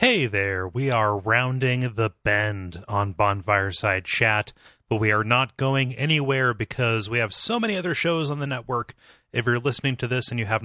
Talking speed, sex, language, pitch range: 190 wpm, male, English, 100-120 Hz